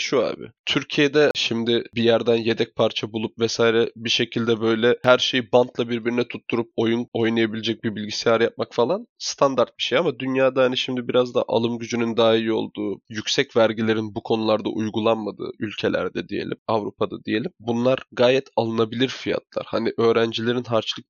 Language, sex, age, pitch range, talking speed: Turkish, male, 20-39, 115-130 Hz, 155 wpm